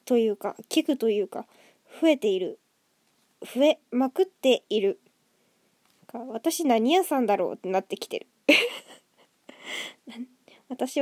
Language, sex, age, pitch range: Japanese, female, 10-29, 235-365 Hz